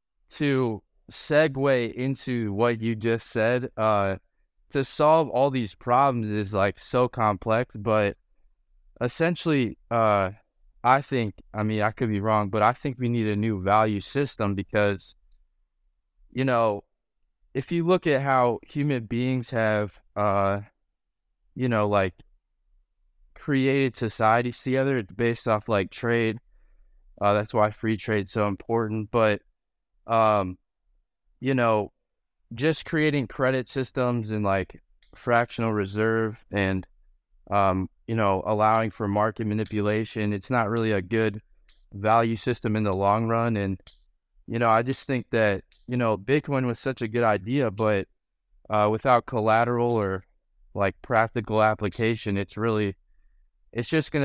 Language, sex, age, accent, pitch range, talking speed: English, male, 20-39, American, 100-125 Hz, 140 wpm